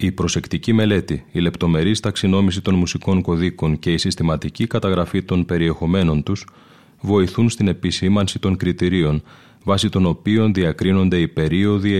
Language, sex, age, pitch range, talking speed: Greek, male, 30-49, 85-100 Hz, 135 wpm